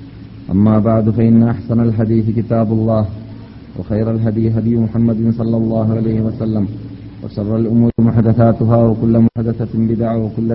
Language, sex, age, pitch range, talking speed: Malayalam, male, 40-59, 105-115 Hz, 125 wpm